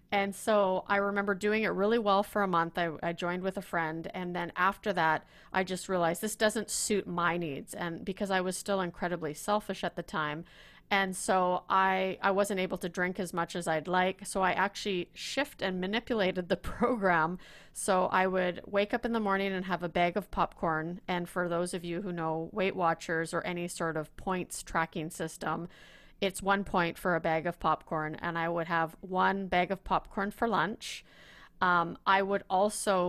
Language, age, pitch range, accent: English, 30-49, 170-195 Hz, American